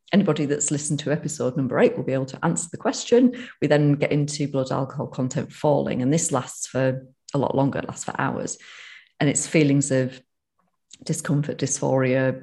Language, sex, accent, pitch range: English, female, British, 135-160 Hz